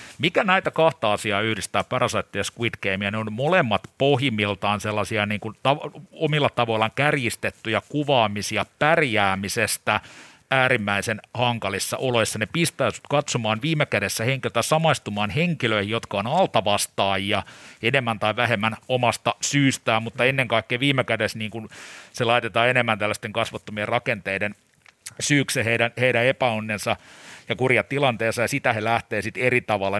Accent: native